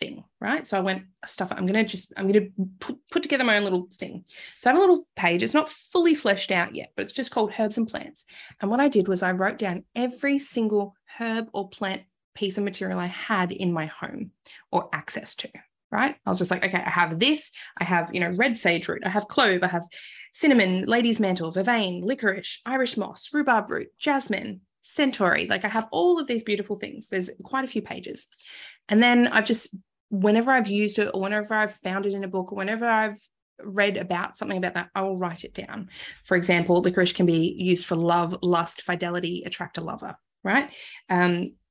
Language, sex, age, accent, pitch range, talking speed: English, female, 20-39, Australian, 185-225 Hz, 220 wpm